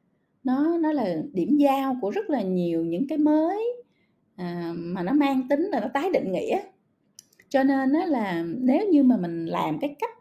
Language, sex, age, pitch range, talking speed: Vietnamese, female, 20-39, 215-300 Hz, 190 wpm